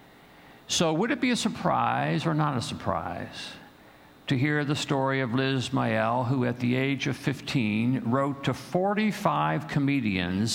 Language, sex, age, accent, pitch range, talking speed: English, male, 50-69, American, 100-130 Hz, 155 wpm